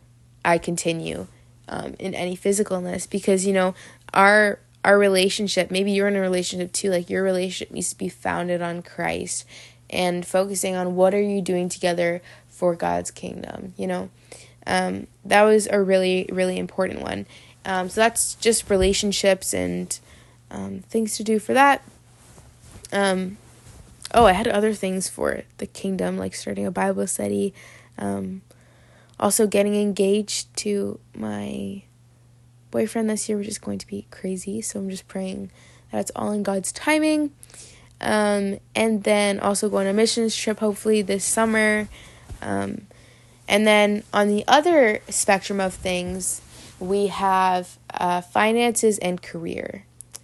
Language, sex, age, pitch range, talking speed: English, female, 20-39, 120-200 Hz, 150 wpm